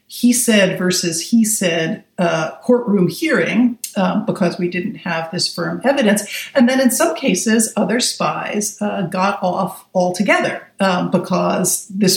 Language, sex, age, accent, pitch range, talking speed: English, female, 50-69, American, 180-220 Hz, 150 wpm